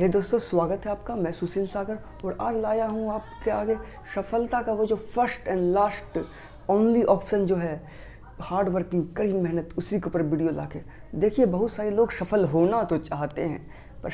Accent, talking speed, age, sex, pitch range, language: native, 185 wpm, 20-39, female, 175-215 Hz, Hindi